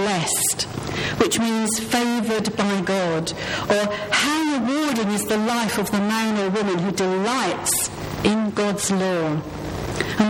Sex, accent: female, British